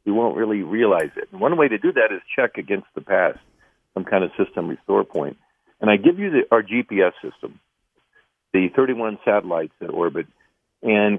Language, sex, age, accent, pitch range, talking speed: English, male, 50-69, American, 105-150 Hz, 190 wpm